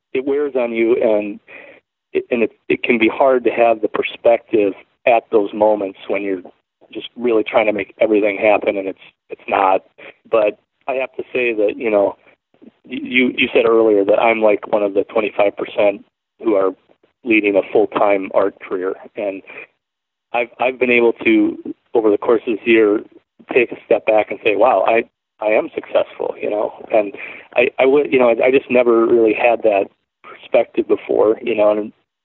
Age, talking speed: 40-59, 190 wpm